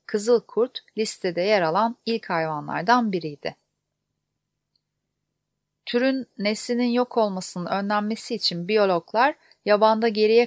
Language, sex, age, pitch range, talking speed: Turkish, female, 40-59, 175-225 Hz, 95 wpm